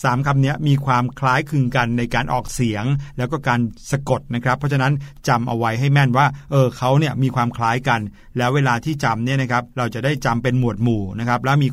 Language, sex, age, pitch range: Thai, male, 60-79, 125-155 Hz